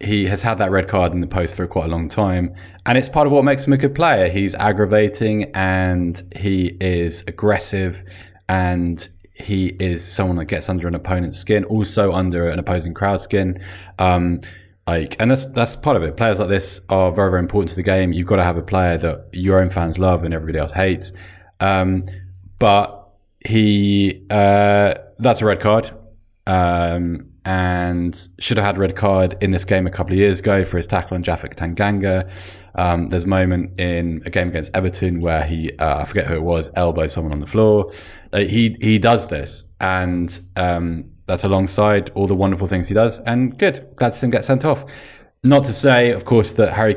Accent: British